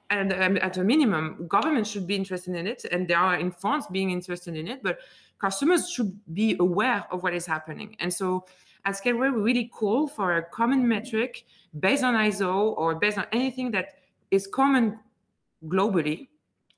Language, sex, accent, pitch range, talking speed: English, female, French, 180-225 Hz, 180 wpm